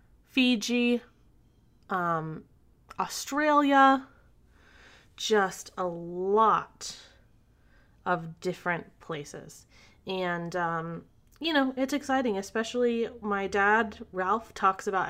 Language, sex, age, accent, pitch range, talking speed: English, female, 20-39, American, 165-225 Hz, 85 wpm